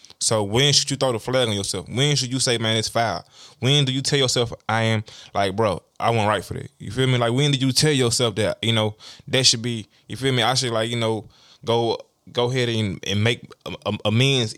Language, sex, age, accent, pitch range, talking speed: English, male, 20-39, American, 110-135 Hz, 245 wpm